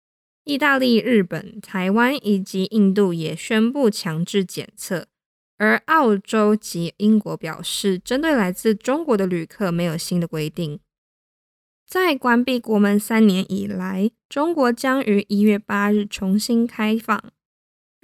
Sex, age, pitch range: female, 20-39, 195-235 Hz